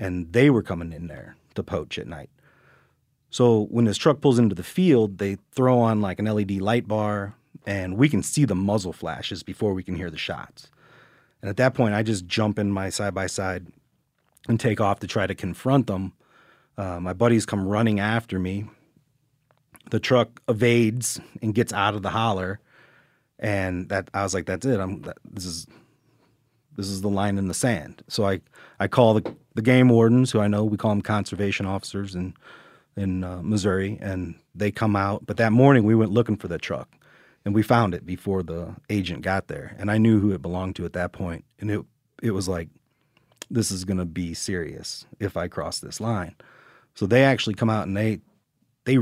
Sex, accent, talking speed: male, American, 205 wpm